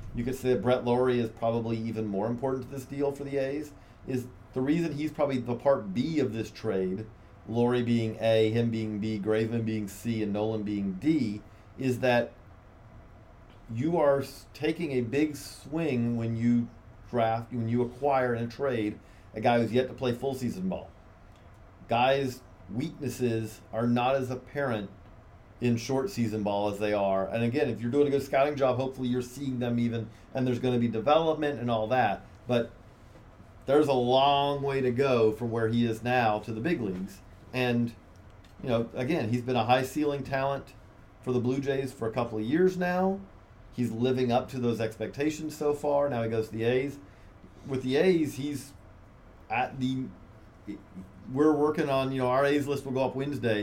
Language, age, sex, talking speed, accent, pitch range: English, 40-59, male, 190 wpm, American, 110-135 Hz